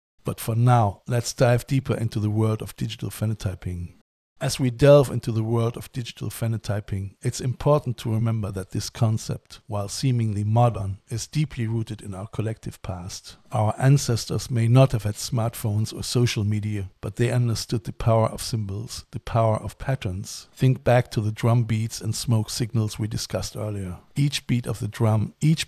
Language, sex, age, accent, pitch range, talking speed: English, male, 50-69, German, 105-120 Hz, 180 wpm